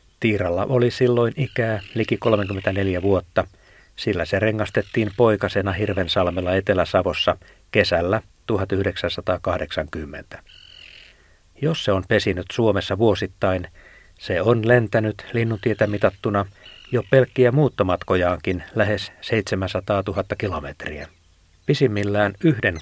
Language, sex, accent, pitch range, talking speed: Finnish, male, native, 95-115 Hz, 90 wpm